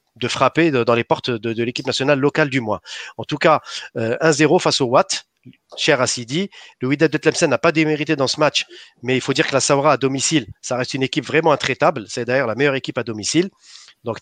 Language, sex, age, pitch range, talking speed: French, male, 40-59, 130-185 Hz, 235 wpm